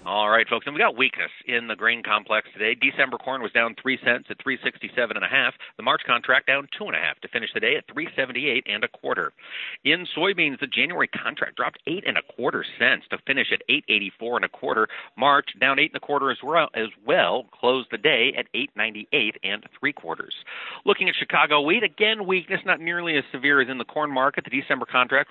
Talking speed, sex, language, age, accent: 220 wpm, male, English, 40-59, American